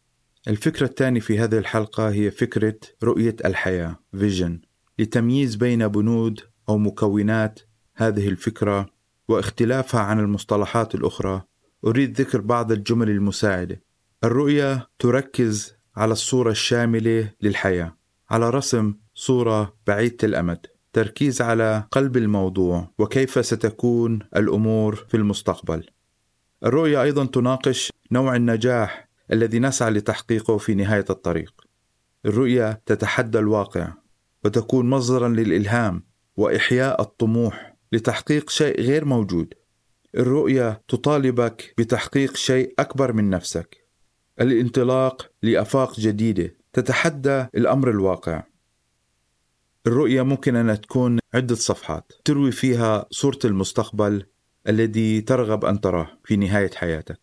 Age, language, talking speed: 30-49, Arabic, 105 wpm